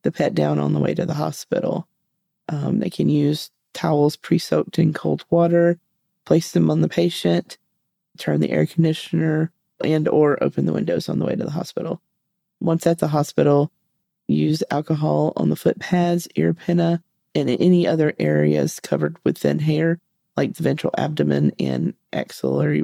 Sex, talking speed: female, 170 wpm